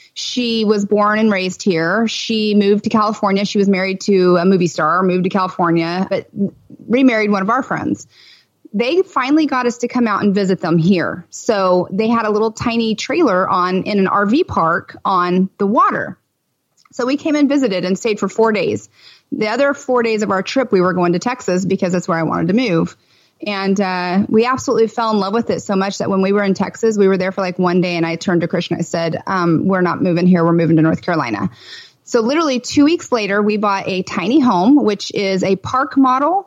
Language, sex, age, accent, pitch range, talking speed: English, female, 30-49, American, 185-235 Hz, 225 wpm